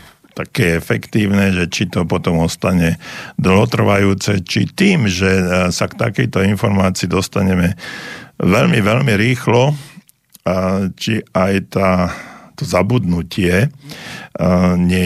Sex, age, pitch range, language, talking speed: male, 50-69, 90-100 Hz, Slovak, 100 wpm